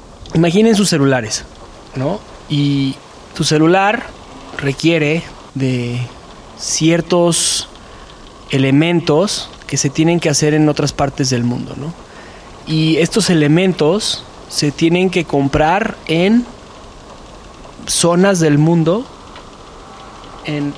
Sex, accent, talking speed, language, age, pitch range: male, Mexican, 100 wpm, Spanish, 20-39, 135-165 Hz